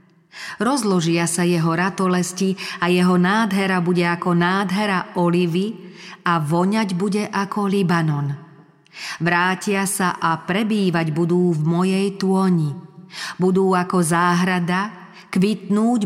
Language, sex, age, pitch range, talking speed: Slovak, female, 40-59, 165-200 Hz, 105 wpm